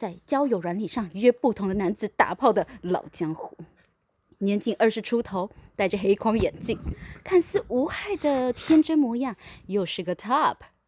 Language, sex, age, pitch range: Chinese, female, 20-39, 195-295 Hz